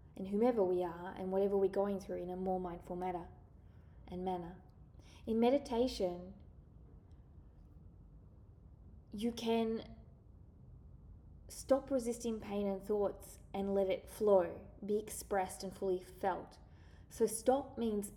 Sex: female